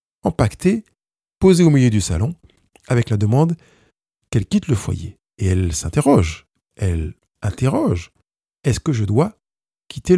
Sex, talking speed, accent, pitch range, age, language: male, 140 wpm, French, 95-135 Hz, 50-69, French